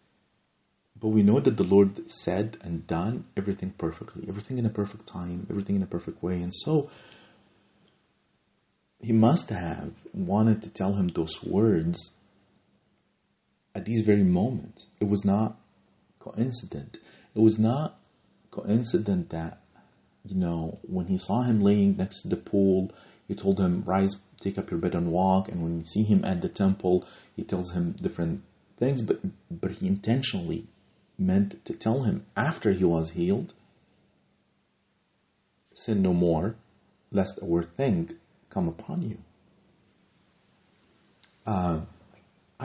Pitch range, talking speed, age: 90-110 Hz, 145 wpm, 40-59